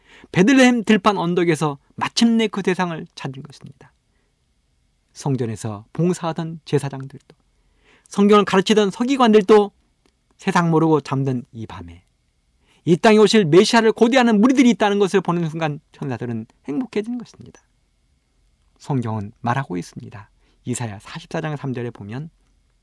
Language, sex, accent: Korean, male, native